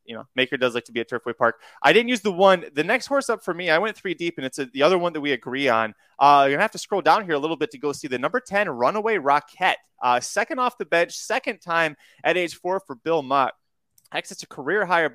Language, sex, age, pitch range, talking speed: English, male, 20-39, 130-180 Hz, 280 wpm